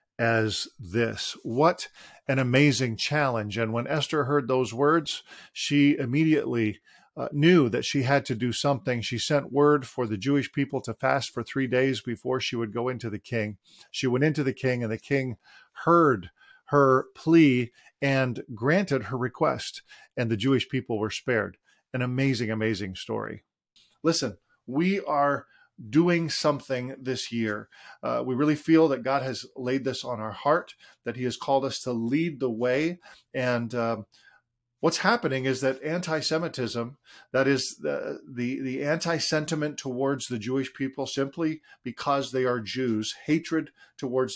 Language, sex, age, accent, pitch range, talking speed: English, male, 40-59, American, 120-145 Hz, 160 wpm